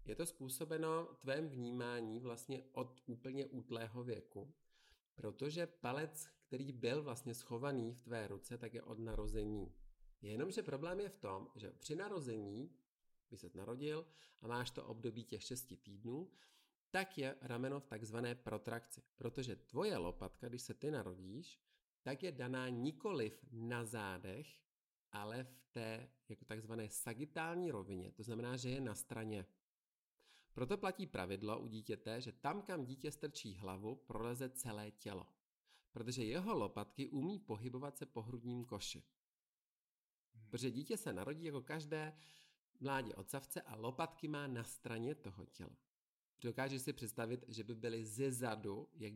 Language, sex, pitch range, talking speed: Czech, male, 110-135 Hz, 145 wpm